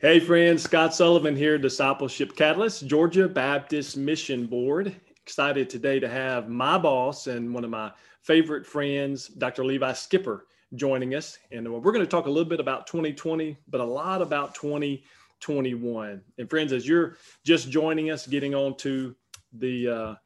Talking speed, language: 160 wpm, English